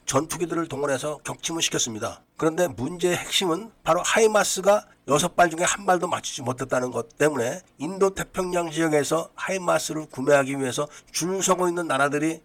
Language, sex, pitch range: Korean, male, 140-180 Hz